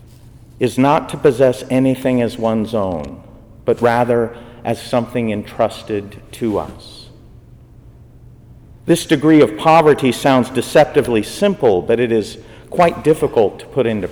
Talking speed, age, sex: 130 wpm, 50-69, male